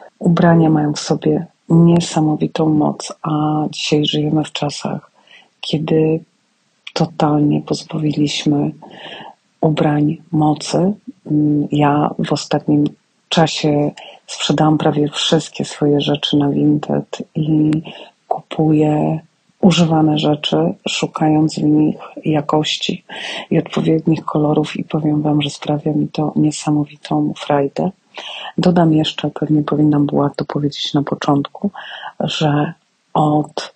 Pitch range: 150-160 Hz